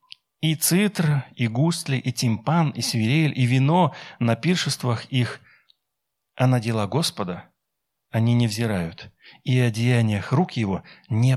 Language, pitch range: Russian, 120-160 Hz